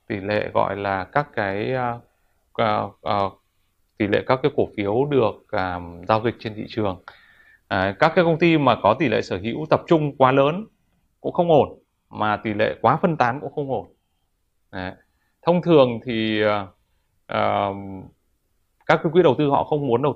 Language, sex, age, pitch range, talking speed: Vietnamese, male, 20-39, 100-130 Hz, 185 wpm